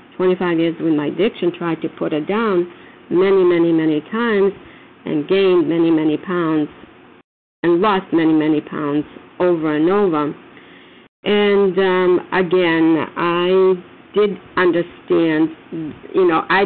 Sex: female